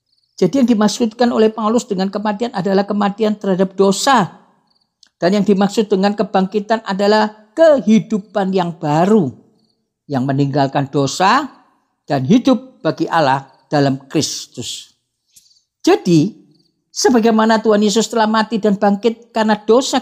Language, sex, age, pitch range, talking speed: Indonesian, female, 50-69, 140-220 Hz, 115 wpm